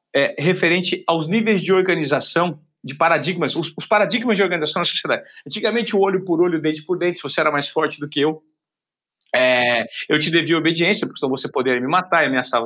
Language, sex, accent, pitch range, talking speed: Portuguese, male, Brazilian, 155-195 Hz, 205 wpm